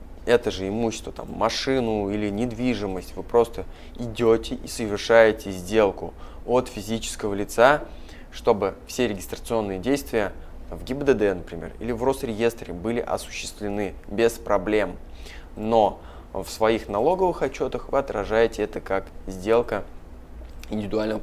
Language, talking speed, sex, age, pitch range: Russian, 115 wpm, male, 20-39, 95-115 Hz